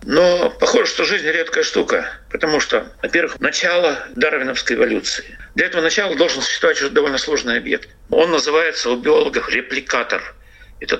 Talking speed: 145 wpm